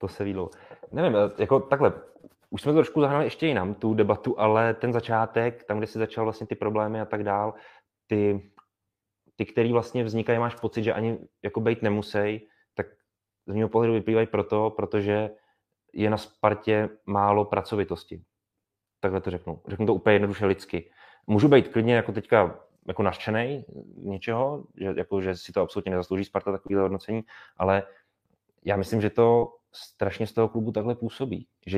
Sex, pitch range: male, 100-115 Hz